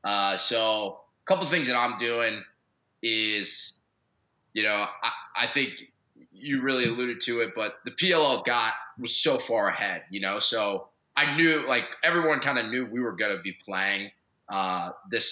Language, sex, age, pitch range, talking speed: English, male, 20-39, 100-125 Hz, 180 wpm